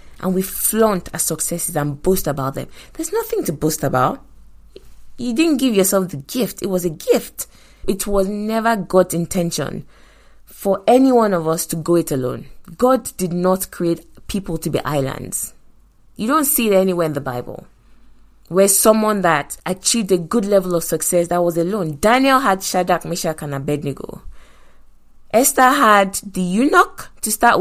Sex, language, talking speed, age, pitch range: female, English, 170 wpm, 20-39, 165-220 Hz